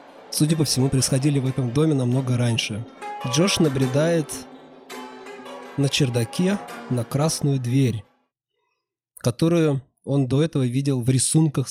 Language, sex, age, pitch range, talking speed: Russian, male, 20-39, 120-150 Hz, 120 wpm